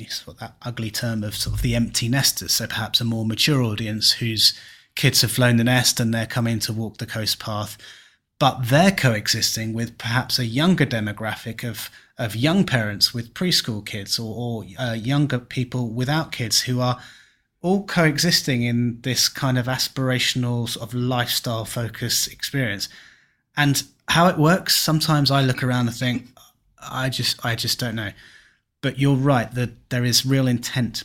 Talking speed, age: 175 wpm, 30-49